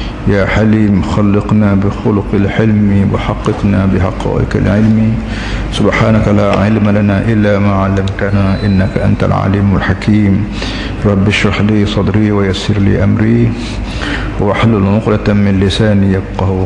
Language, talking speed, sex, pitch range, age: Malay, 110 wpm, male, 105-115 Hz, 60-79